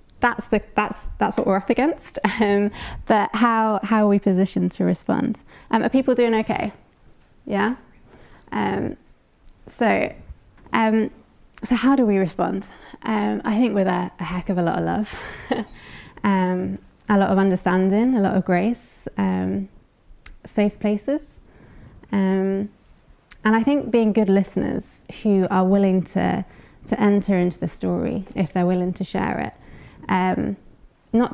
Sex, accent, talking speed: female, British, 150 wpm